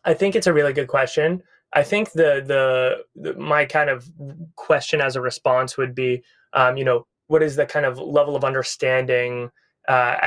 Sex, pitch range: male, 130-155 Hz